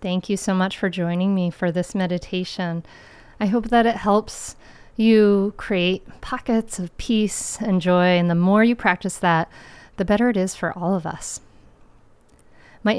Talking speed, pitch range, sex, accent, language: 170 wpm, 175-220 Hz, female, American, English